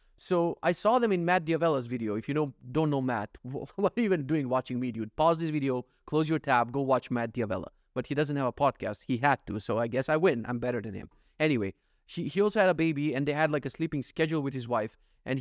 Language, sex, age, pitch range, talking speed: English, male, 30-49, 130-185 Hz, 255 wpm